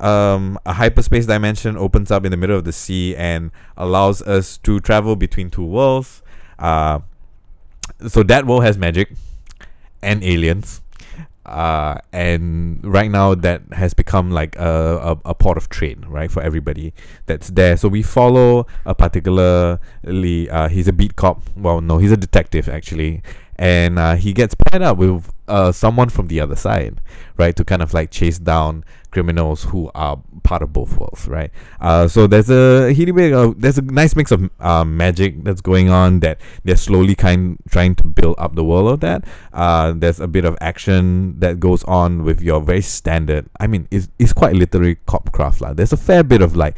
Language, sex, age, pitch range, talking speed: English, male, 20-39, 80-100 Hz, 185 wpm